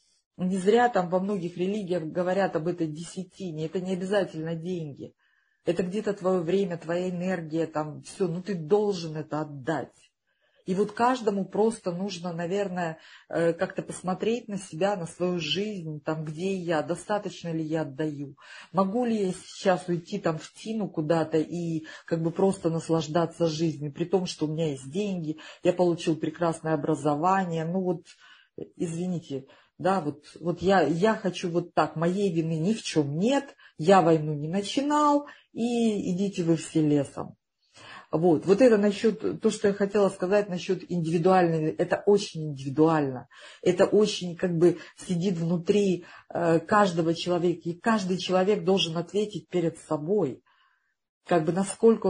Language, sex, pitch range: Russian, female, 165-195 Hz